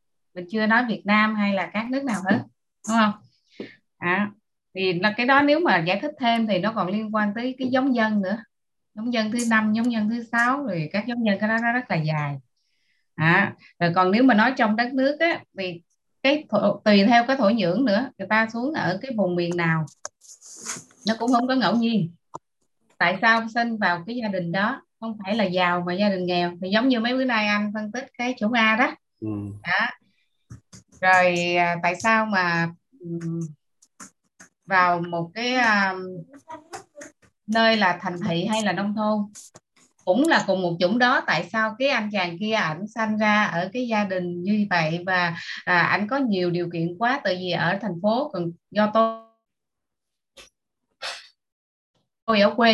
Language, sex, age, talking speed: Vietnamese, female, 20-39, 195 wpm